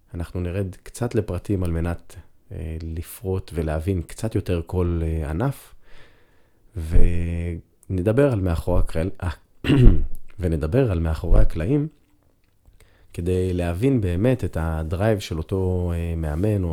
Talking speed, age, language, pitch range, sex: 100 wpm, 30-49, Hebrew, 85-100 Hz, male